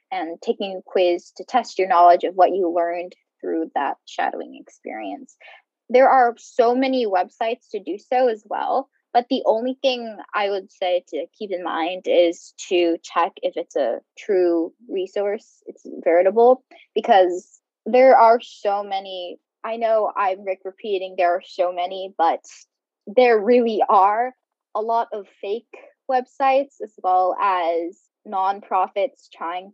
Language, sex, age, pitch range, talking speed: English, female, 10-29, 190-255 Hz, 150 wpm